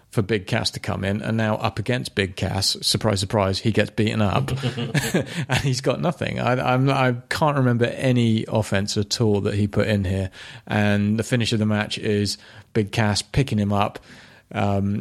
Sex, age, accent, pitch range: male, 30-49, British, 100-120 Hz